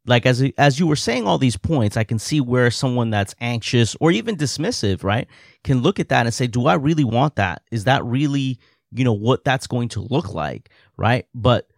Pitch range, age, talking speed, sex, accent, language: 110-140 Hz, 30-49, 225 wpm, male, American, English